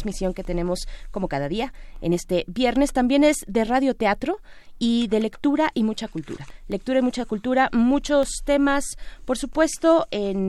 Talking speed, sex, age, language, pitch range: 160 wpm, female, 20-39, Spanish, 180-240 Hz